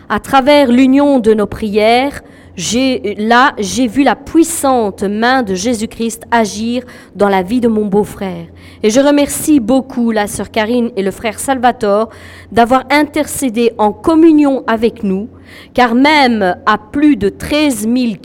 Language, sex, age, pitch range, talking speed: French, female, 40-59, 215-265 Hz, 150 wpm